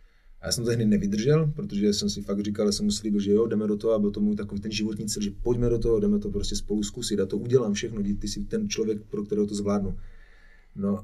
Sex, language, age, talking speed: male, Czech, 30-49, 265 wpm